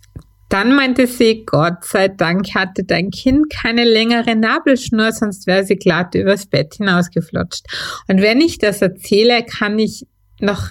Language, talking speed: German, 150 wpm